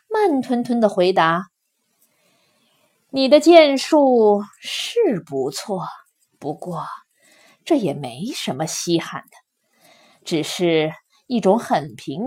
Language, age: Chinese, 20-39